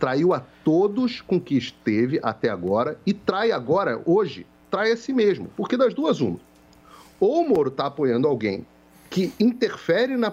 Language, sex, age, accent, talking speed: Portuguese, male, 40-59, Brazilian, 170 wpm